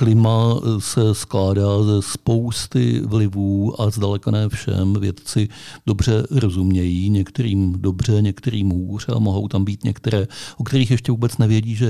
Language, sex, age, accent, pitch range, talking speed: Czech, male, 50-69, native, 100-120 Hz, 140 wpm